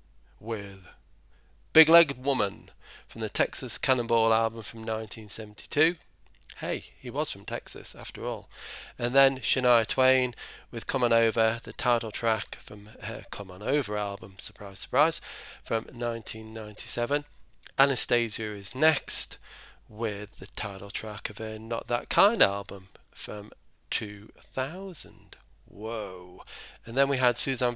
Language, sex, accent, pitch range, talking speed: English, male, British, 105-120 Hz, 130 wpm